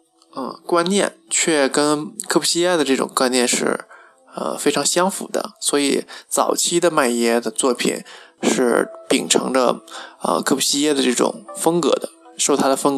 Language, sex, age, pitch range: Chinese, male, 20-39, 130-160 Hz